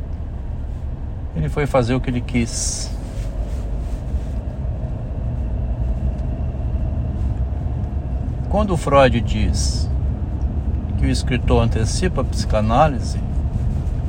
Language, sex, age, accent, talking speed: Portuguese, male, 60-79, Brazilian, 70 wpm